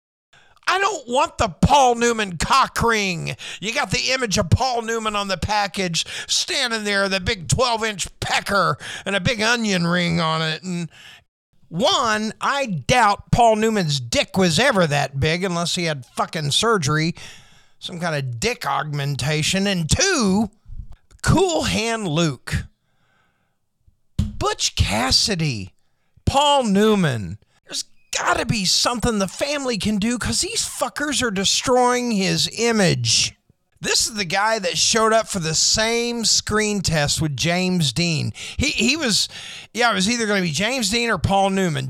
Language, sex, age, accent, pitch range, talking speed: English, male, 50-69, American, 160-230 Hz, 150 wpm